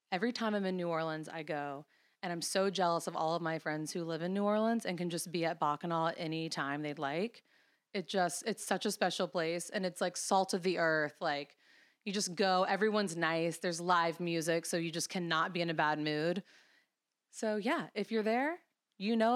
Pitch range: 175-225 Hz